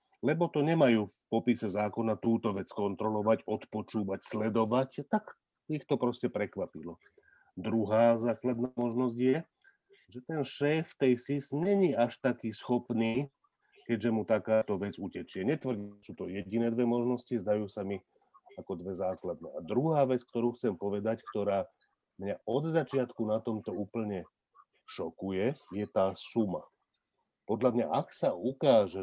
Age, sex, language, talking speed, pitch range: 40-59, male, Slovak, 145 wpm, 105-130 Hz